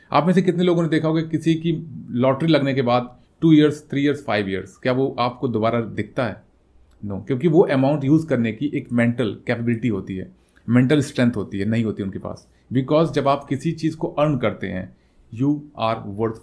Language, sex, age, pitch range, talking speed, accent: Hindi, male, 30-49, 105-150 Hz, 225 wpm, native